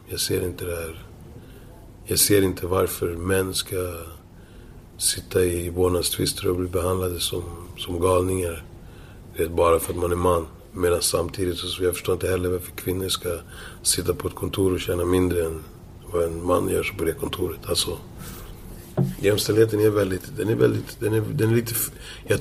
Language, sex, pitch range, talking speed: Swedish, male, 90-110 Hz, 170 wpm